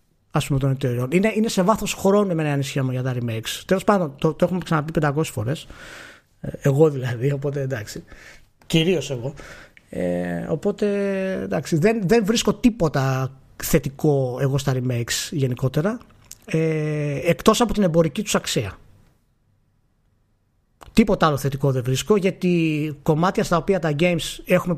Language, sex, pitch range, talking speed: Greek, male, 135-200 Hz, 145 wpm